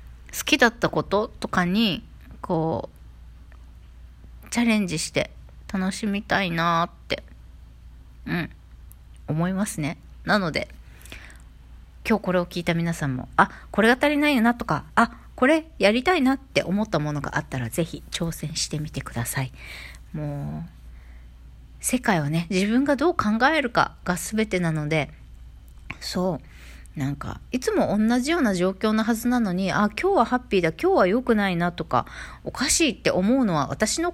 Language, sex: Japanese, female